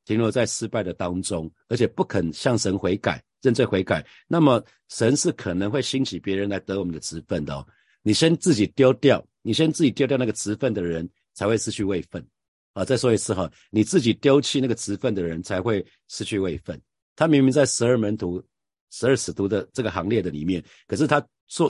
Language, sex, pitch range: Chinese, male, 95-125 Hz